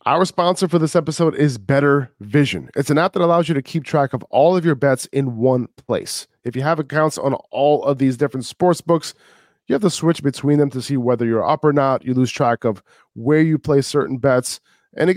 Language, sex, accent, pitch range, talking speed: English, male, American, 120-145 Hz, 235 wpm